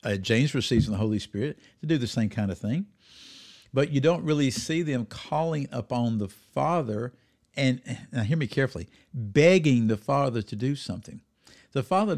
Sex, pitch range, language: male, 105-145 Hz, English